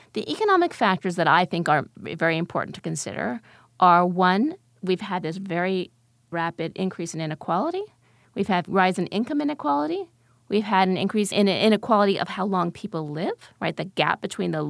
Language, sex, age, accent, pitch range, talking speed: English, female, 30-49, American, 175-220 Hz, 175 wpm